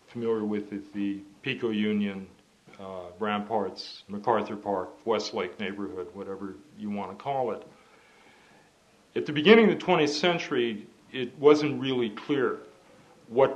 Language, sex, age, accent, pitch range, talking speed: English, male, 50-69, American, 105-125 Hz, 130 wpm